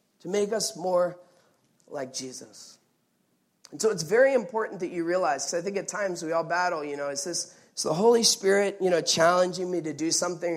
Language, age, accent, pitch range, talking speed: English, 30-49, American, 140-190 Hz, 205 wpm